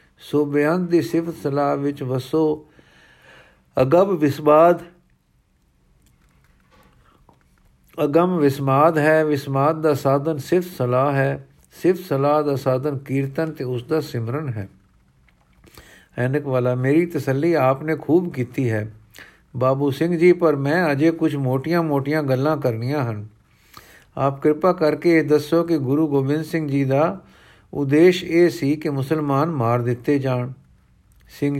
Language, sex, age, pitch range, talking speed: Punjabi, male, 50-69, 130-160 Hz, 125 wpm